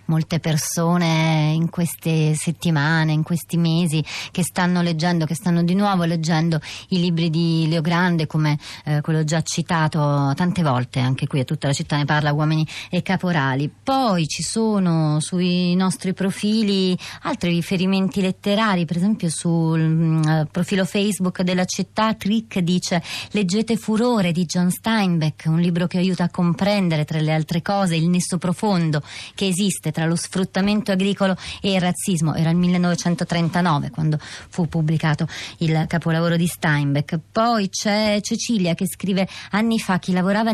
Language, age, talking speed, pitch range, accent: Italian, 30-49, 150 wpm, 160-190 Hz, native